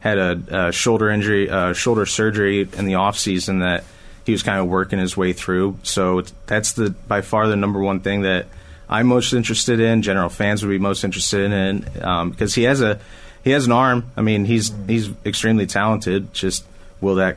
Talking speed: 205 wpm